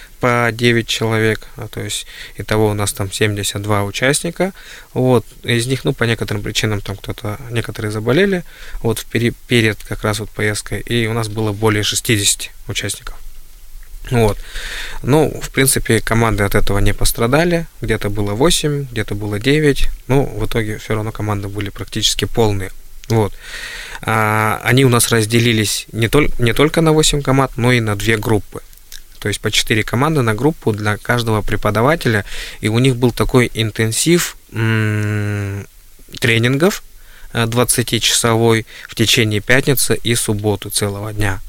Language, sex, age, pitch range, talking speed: Russian, male, 20-39, 105-120 Hz, 150 wpm